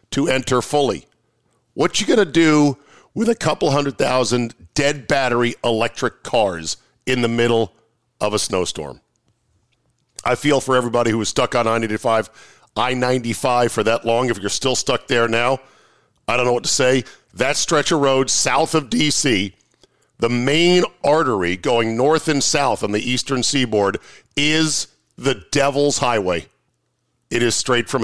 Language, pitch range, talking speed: English, 115-150 Hz, 160 wpm